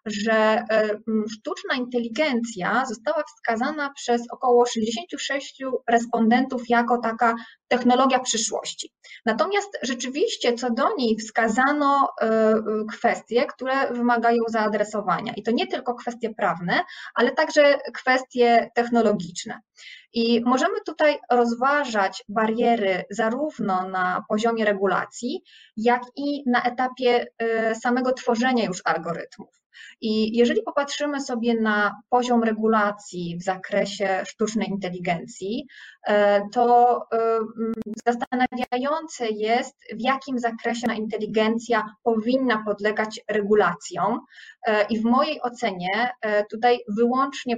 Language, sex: Polish, female